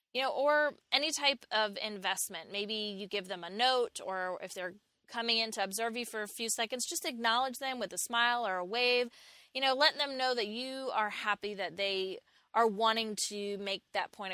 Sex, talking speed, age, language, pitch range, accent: female, 215 wpm, 20-39, English, 205-250 Hz, American